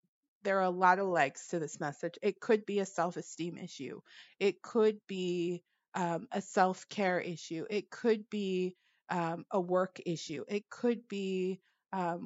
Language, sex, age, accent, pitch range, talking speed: English, female, 30-49, American, 175-200 Hz, 170 wpm